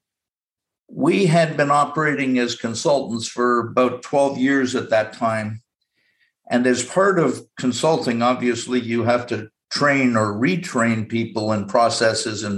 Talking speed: 140 wpm